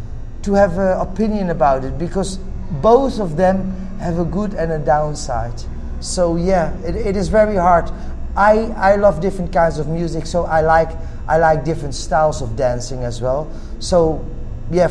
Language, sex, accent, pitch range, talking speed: English, male, Dutch, 150-185 Hz, 175 wpm